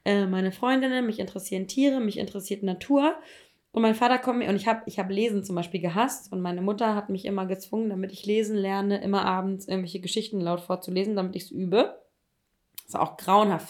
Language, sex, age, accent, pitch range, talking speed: German, female, 20-39, German, 190-235 Hz, 205 wpm